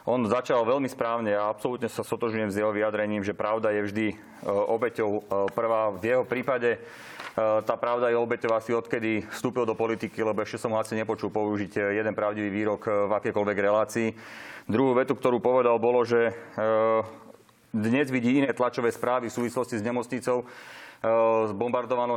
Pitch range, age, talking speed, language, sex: 110-125 Hz, 30-49, 155 wpm, Slovak, male